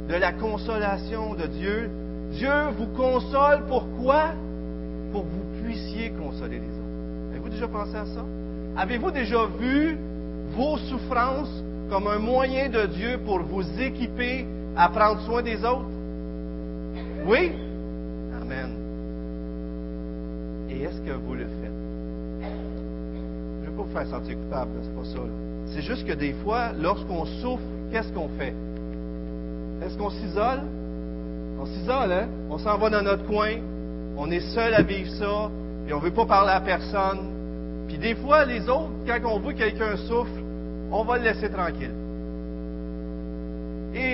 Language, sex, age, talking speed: French, male, 50-69, 150 wpm